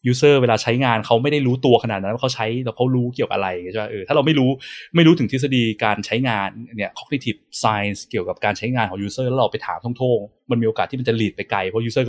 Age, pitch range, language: 20-39, 110-150 Hz, Thai